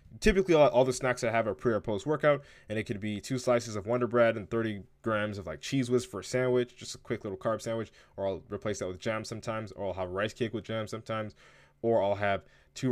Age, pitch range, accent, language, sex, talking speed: 20-39, 105-125 Hz, American, English, male, 250 wpm